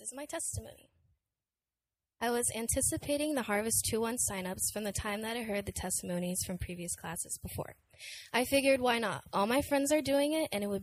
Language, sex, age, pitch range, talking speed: English, female, 10-29, 190-245 Hz, 195 wpm